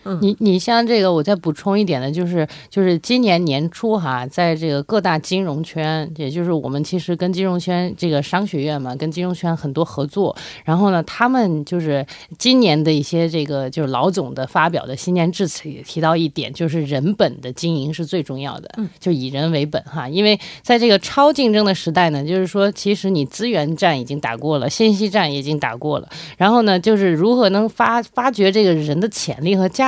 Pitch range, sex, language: 155-205 Hz, female, Korean